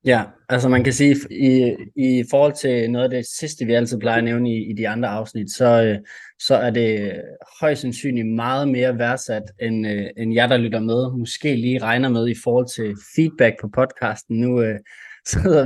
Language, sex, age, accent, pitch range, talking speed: Danish, male, 20-39, native, 115-130 Hz, 195 wpm